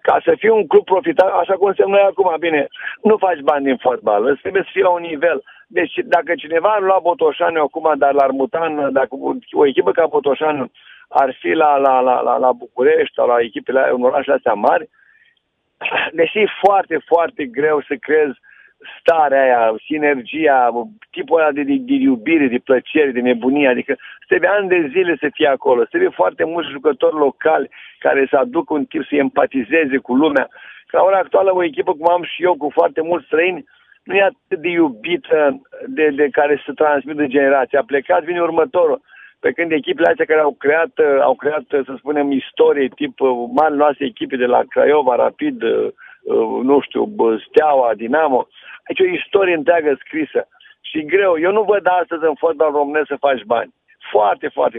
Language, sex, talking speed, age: Romanian, male, 185 wpm, 50-69